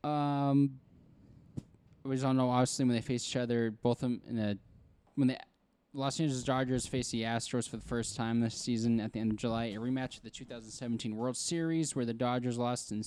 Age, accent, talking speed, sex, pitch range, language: 10-29, American, 205 wpm, male, 115-130 Hz, English